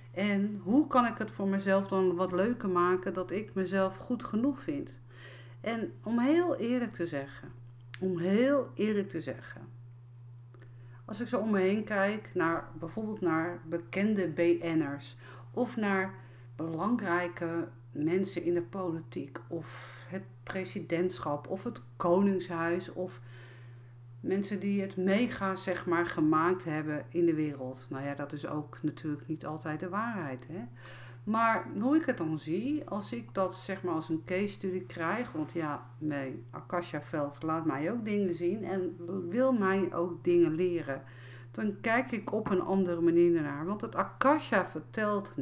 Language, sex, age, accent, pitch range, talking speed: Dutch, female, 50-69, Dutch, 130-195 Hz, 155 wpm